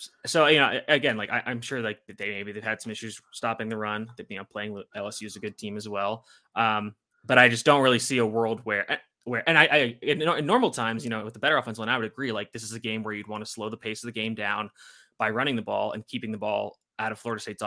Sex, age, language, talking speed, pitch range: male, 20-39, English, 290 wpm, 105-120 Hz